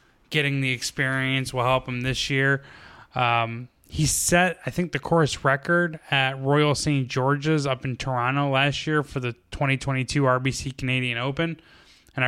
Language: English